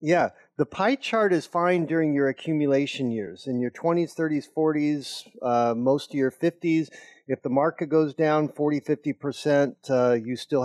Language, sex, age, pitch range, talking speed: English, male, 50-69, 130-160 Hz, 165 wpm